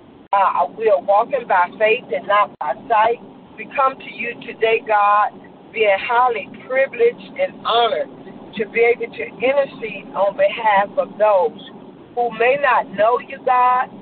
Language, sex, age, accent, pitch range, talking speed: English, female, 50-69, American, 210-265 Hz, 150 wpm